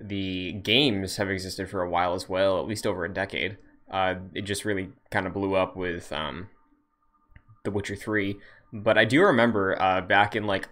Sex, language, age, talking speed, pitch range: male, English, 20-39, 195 wpm, 95-110 Hz